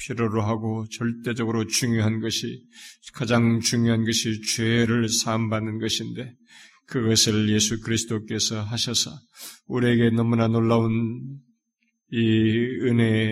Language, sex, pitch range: Korean, male, 115-130 Hz